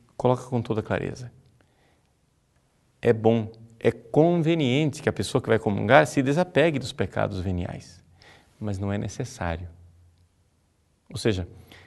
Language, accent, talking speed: Portuguese, Brazilian, 125 wpm